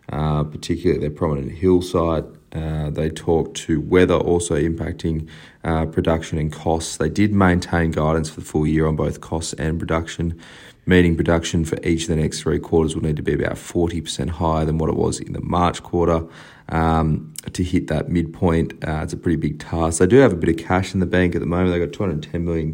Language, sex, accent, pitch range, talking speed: English, male, Australian, 80-85 Hz, 215 wpm